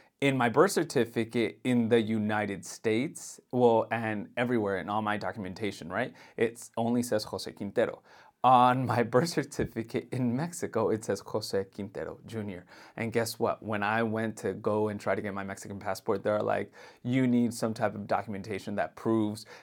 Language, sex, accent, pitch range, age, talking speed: English, male, American, 110-140 Hz, 30-49, 175 wpm